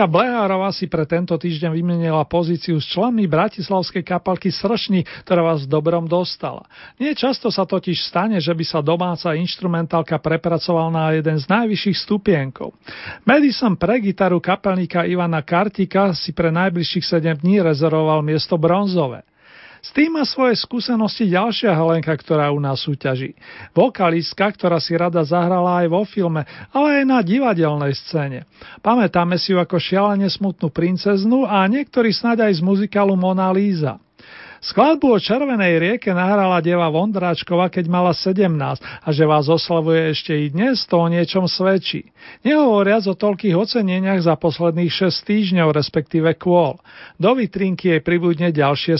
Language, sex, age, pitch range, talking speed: Slovak, male, 40-59, 165-205 Hz, 150 wpm